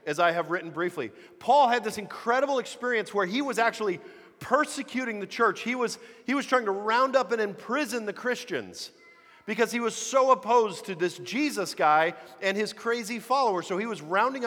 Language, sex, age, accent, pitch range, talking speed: English, male, 40-59, American, 170-230 Hz, 190 wpm